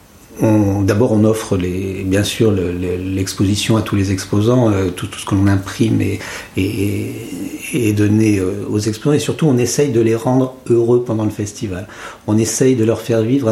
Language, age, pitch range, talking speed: French, 50-69, 105-125 Hz, 200 wpm